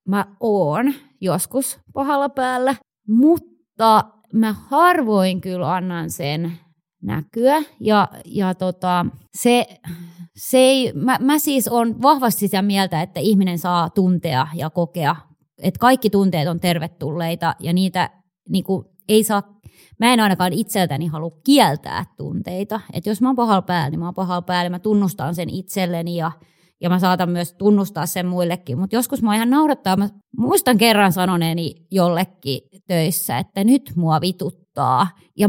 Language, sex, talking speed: Finnish, female, 145 wpm